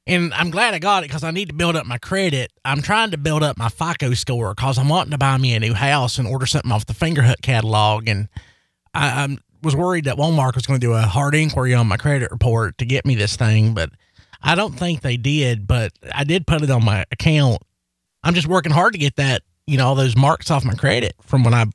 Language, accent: English, American